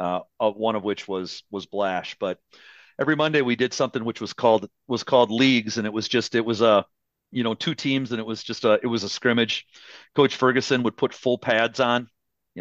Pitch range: 95-120 Hz